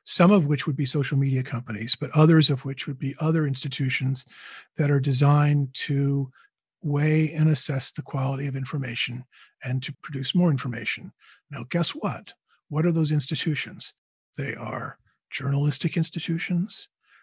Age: 50-69